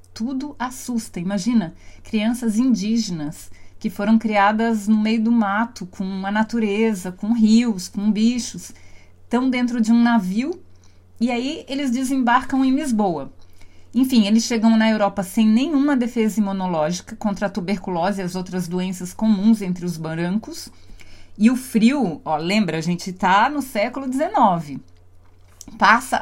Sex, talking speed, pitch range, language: female, 140 wpm, 180-235 Hz, Portuguese